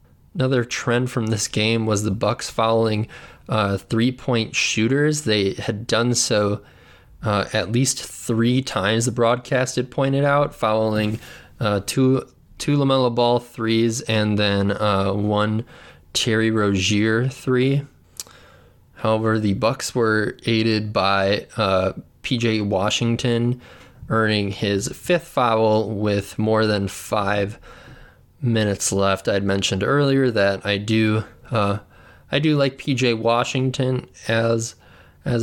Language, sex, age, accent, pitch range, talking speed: English, male, 20-39, American, 105-125 Hz, 125 wpm